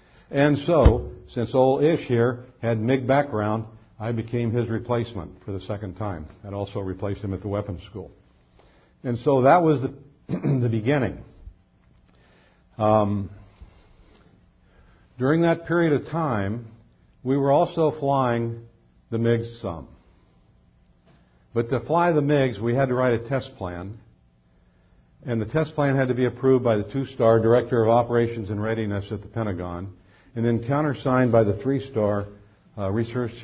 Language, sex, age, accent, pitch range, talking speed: English, male, 60-79, American, 100-125 Hz, 150 wpm